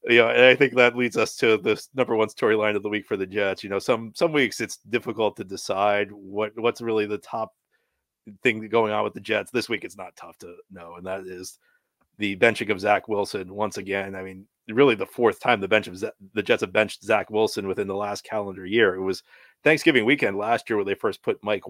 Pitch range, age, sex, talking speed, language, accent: 100-115 Hz, 40-59, male, 240 wpm, English, American